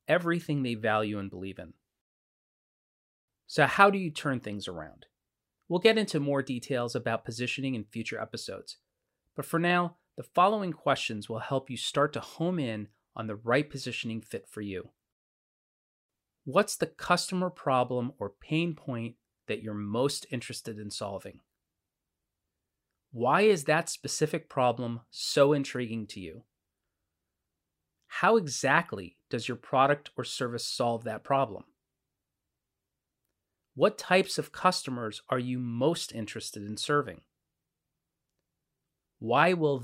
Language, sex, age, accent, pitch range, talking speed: English, male, 30-49, American, 110-155 Hz, 130 wpm